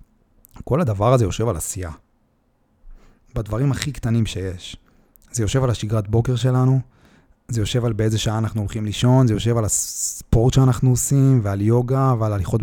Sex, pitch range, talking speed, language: male, 105-120 Hz, 160 wpm, Hebrew